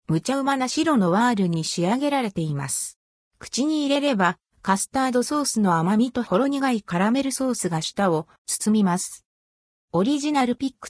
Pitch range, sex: 170-255 Hz, female